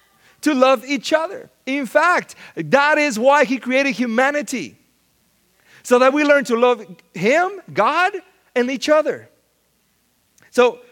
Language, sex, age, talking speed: English, male, 40-59, 130 wpm